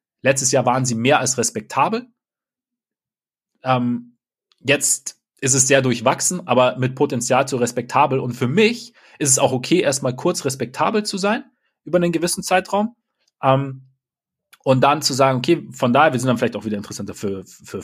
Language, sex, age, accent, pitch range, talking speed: German, male, 30-49, German, 120-160 Hz, 170 wpm